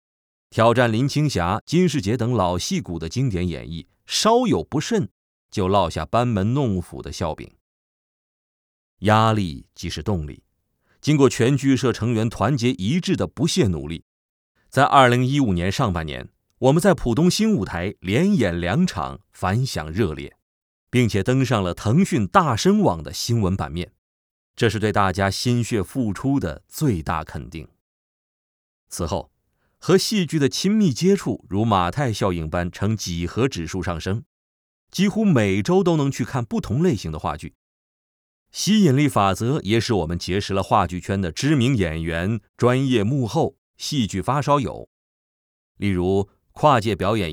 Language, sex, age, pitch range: Chinese, male, 30-49, 90-140 Hz